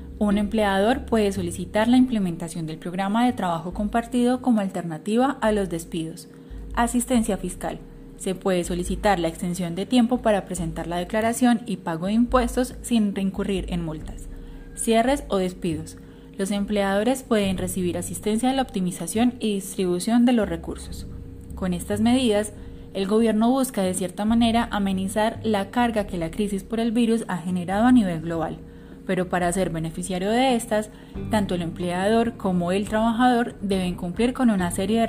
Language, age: Spanish, 10-29